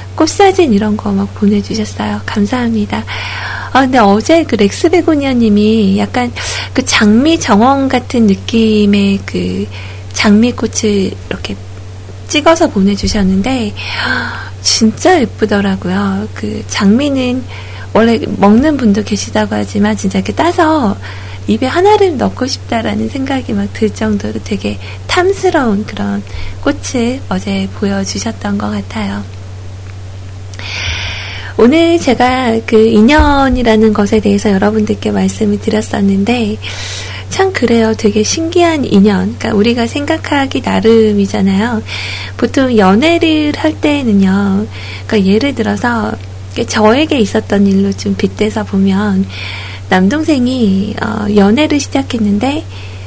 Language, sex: Korean, female